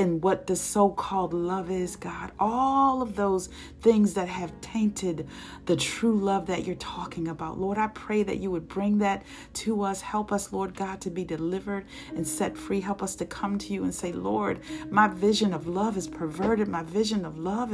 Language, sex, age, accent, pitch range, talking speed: English, female, 40-59, American, 175-245 Hz, 205 wpm